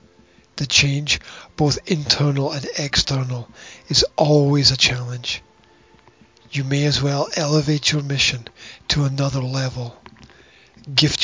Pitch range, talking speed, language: 130-150 Hz, 110 wpm, English